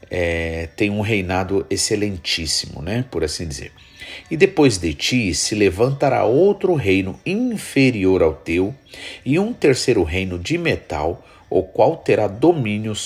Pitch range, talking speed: 90-125 Hz, 140 wpm